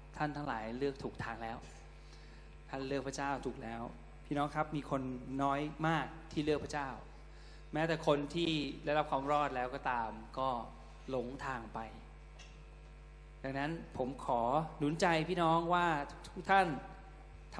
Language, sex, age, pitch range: Thai, male, 20-39, 125-150 Hz